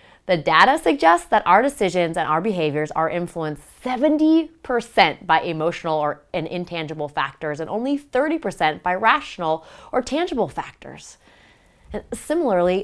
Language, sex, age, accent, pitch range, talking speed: English, female, 30-49, American, 155-220 Hz, 120 wpm